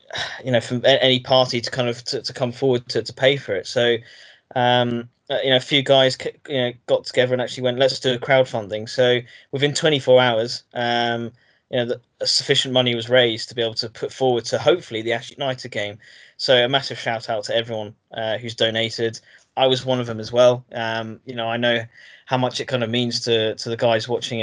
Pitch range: 115-130 Hz